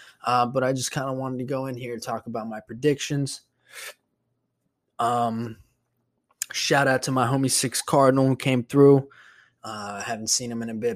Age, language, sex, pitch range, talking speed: 20-39, English, male, 110-135 Hz, 190 wpm